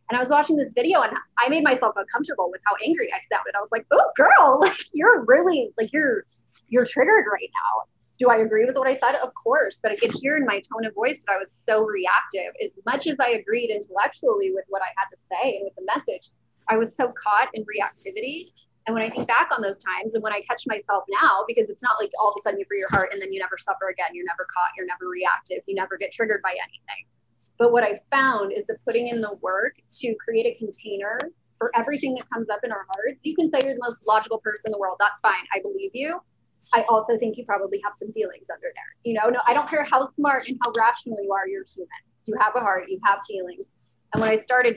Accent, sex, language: American, female, English